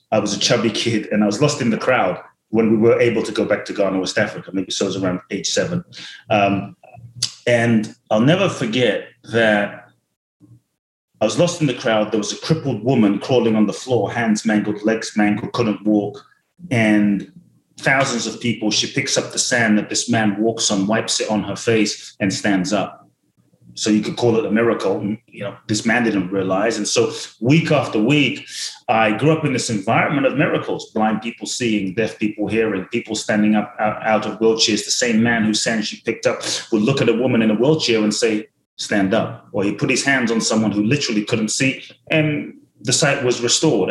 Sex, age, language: male, 30-49, English